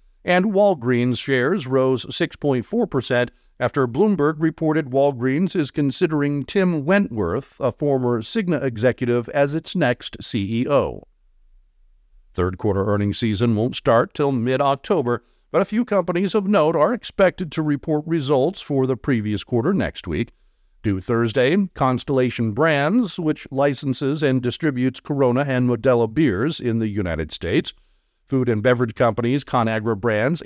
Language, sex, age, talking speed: English, male, 50-69, 135 wpm